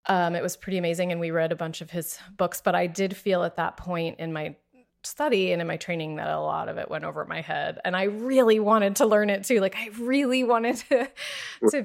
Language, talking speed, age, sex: English, 255 wpm, 30-49, female